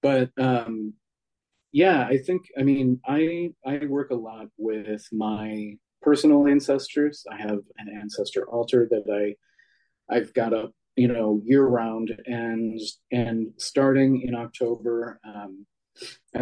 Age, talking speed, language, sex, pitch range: 30-49, 135 wpm, English, male, 110-130 Hz